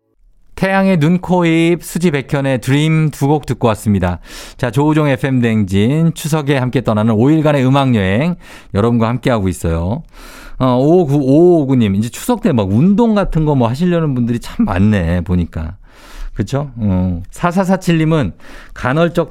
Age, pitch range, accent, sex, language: 50-69, 105-165 Hz, native, male, Korean